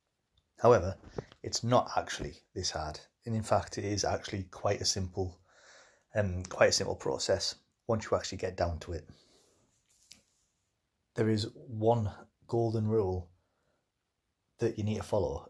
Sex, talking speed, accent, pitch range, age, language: male, 145 wpm, British, 90-115 Hz, 30-49, English